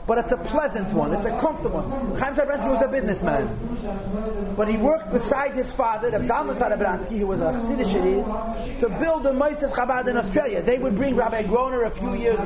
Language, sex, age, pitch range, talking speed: English, male, 30-49, 205-275 Hz, 195 wpm